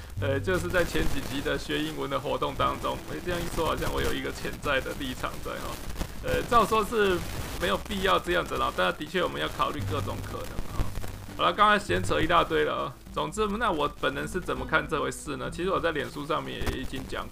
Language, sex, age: Chinese, male, 20-39